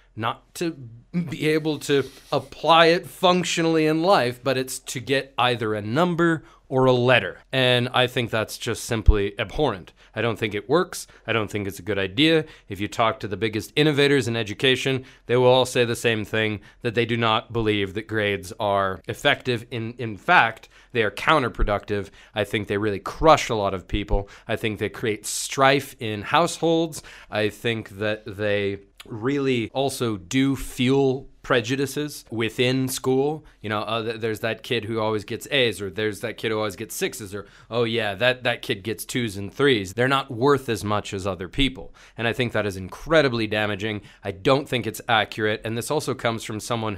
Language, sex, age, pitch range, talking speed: Bulgarian, male, 30-49, 105-135 Hz, 195 wpm